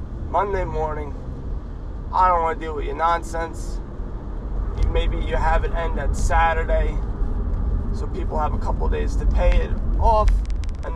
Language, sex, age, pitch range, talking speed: English, male, 30-49, 70-80 Hz, 160 wpm